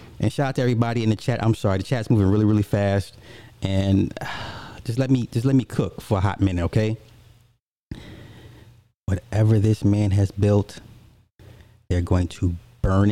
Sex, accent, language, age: male, American, English, 30-49